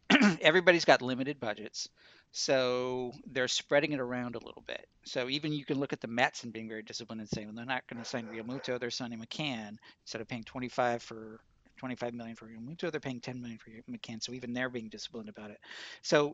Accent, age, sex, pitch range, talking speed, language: American, 50-69, male, 115-135 Hz, 215 wpm, English